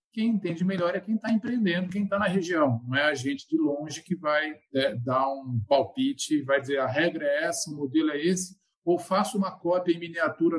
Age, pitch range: 50-69, 155-195 Hz